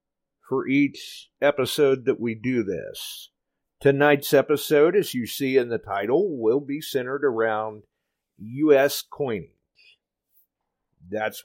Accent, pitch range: American, 110-145 Hz